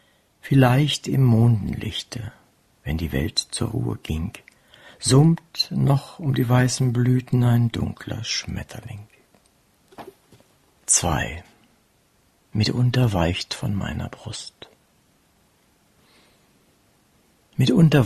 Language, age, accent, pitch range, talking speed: German, 60-79, German, 110-130 Hz, 85 wpm